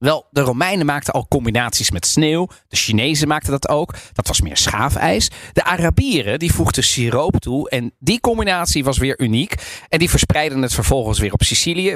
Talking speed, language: 185 wpm, Dutch